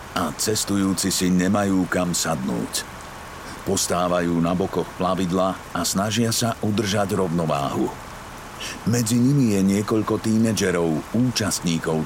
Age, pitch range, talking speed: 50-69, 85-115 Hz, 105 wpm